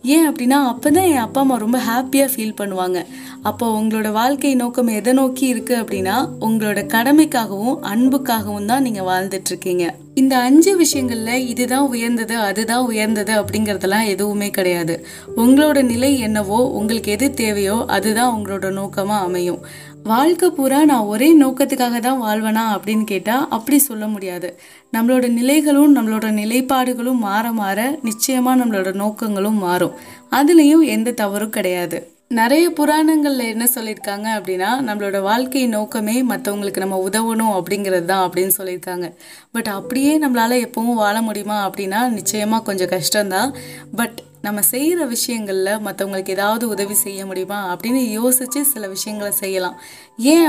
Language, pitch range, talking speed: Tamil, 200-255 Hz, 125 wpm